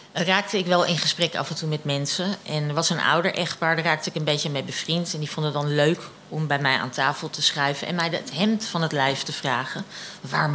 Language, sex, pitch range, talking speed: Dutch, female, 150-205 Hz, 260 wpm